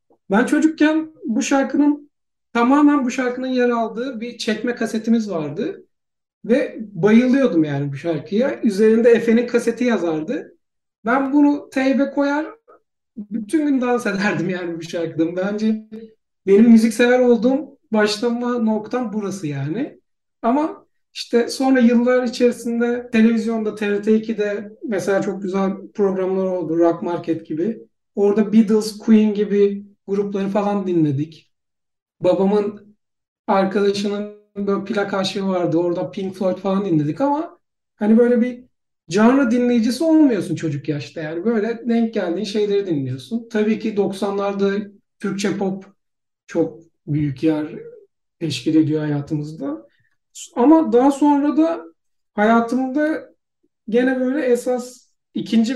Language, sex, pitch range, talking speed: Turkish, male, 190-245 Hz, 115 wpm